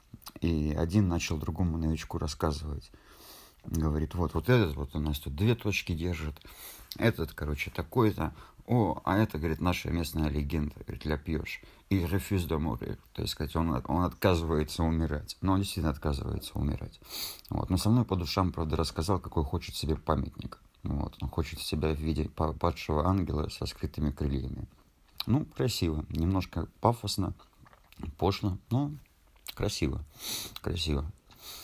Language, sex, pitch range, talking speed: Russian, male, 75-100 Hz, 145 wpm